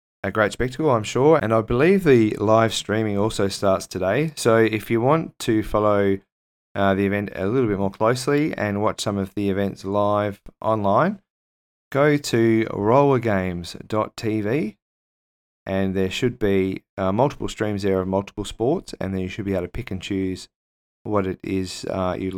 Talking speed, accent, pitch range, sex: 175 wpm, Australian, 95-110 Hz, male